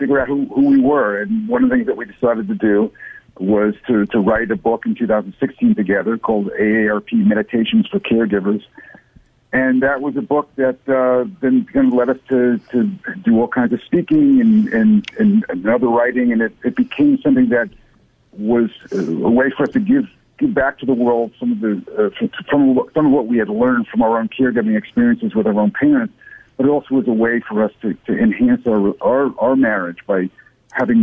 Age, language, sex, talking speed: 60-79, English, male, 195 wpm